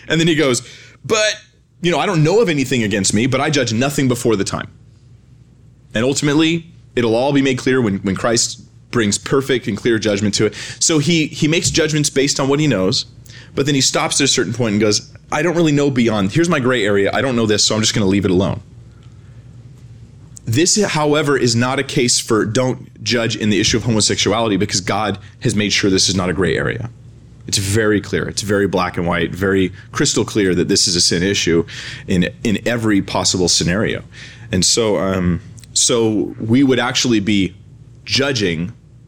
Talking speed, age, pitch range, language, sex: 205 wpm, 30-49, 105-135 Hz, English, male